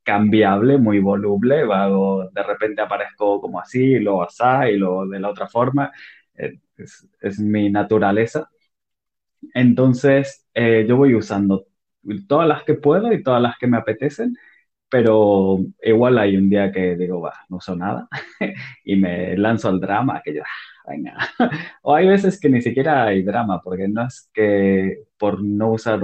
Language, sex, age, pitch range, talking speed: Spanish, male, 20-39, 100-130 Hz, 165 wpm